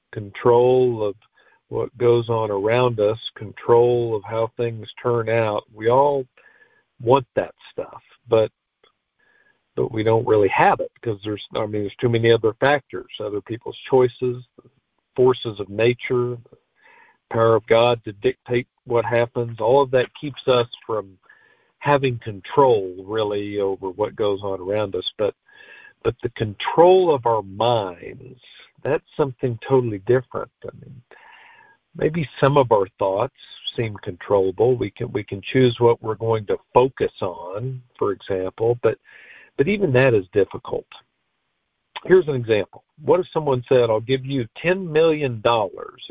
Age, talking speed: 50-69, 150 wpm